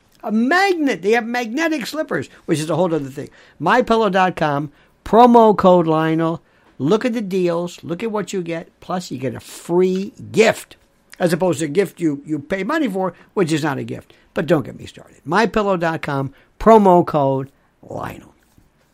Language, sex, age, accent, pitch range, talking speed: English, male, 60-79, American, 160-235 Hz, 175 wpm